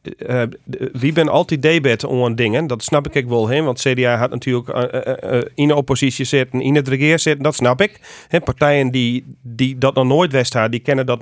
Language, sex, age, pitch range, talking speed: Dutch, male, 40-59, 120-150 Hz, 225 wpm